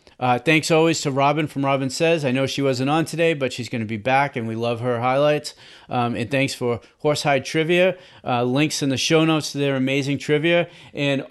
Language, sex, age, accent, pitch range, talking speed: English, male, 40-59, American, 125-160 Hz, 225 wpm